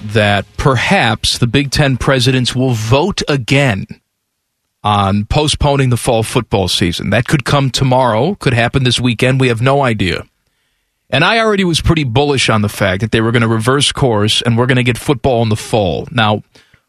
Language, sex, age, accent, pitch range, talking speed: English, male, 40-59, American, 110-145 Hz, 190 wpm